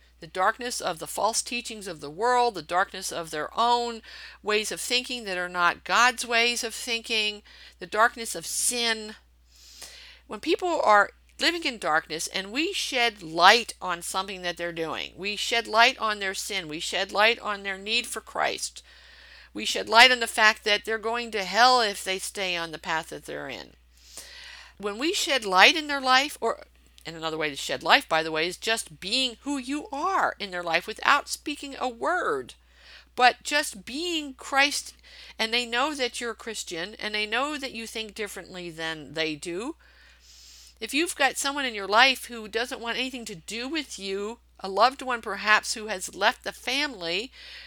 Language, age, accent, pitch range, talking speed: English, 50-69, American, 180-250 Hz, 190 wpm